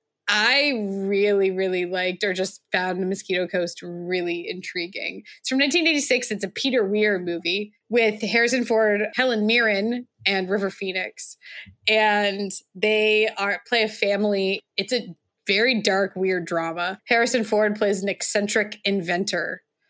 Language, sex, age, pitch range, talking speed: English, female, 20-39, 180-220 Hz, 140 wpm